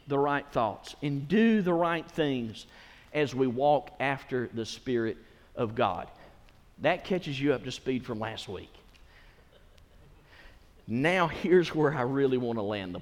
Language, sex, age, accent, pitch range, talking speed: English, male, 50-69, American, 110-150 Hz, 155 wpm